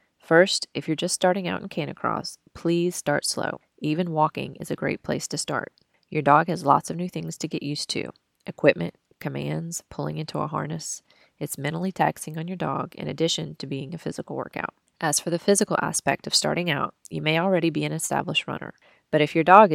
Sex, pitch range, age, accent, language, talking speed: female, 145-175 Hz, 20-39, American, English, 205 wpm